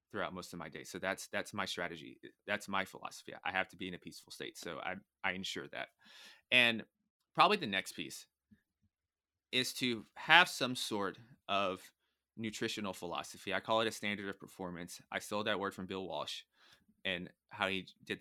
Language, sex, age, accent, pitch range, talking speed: English, male, 30-49, American, 90-115 Hz, 190 wpm